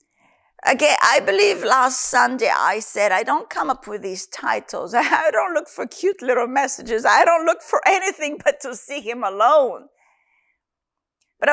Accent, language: American, English